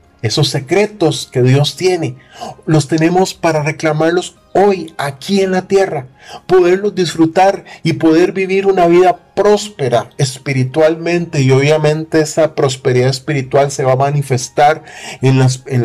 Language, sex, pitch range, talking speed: Spanish, male, 130-165 Hz, 130 wpm